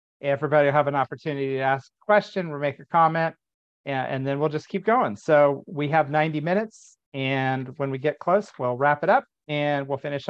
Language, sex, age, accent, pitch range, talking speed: English, male, 50-69, American, 140-165 Hz, 215 wpm